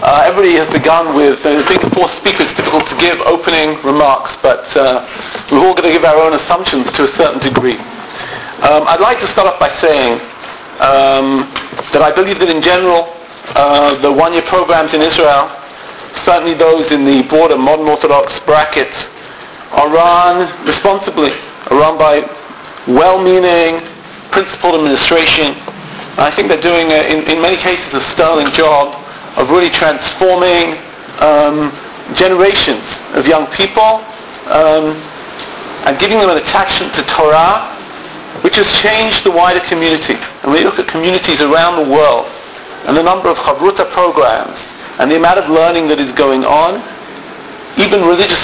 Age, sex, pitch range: 50-69, male, 145-175 Hz